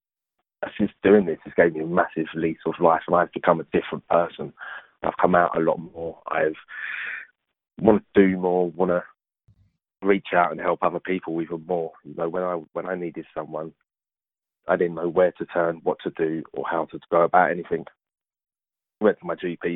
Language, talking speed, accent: English, 200 wpm, British